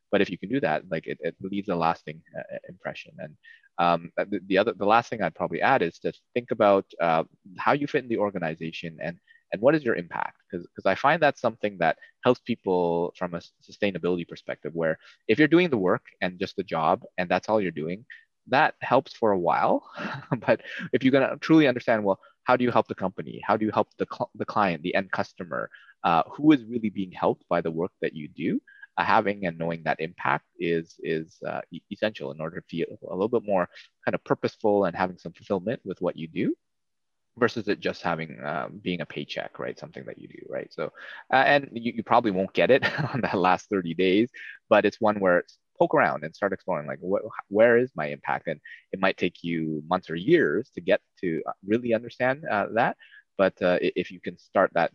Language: English